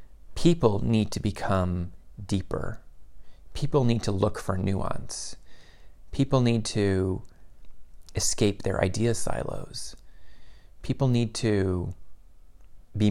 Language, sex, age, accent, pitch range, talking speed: English, male, 30-49, American, 85-120 Hz, 100 wpm